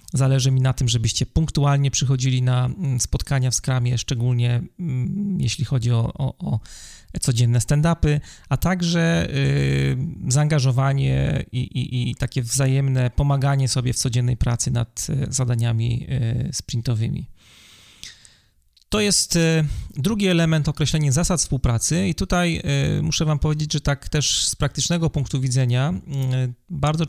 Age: 30-49